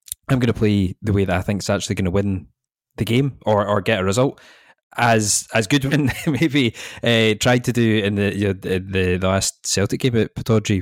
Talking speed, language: 220 wpm, English